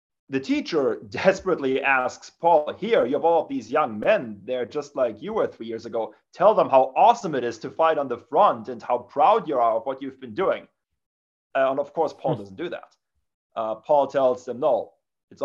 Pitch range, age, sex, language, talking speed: 115-150 Hz, 30-49, male, English, 215 wpm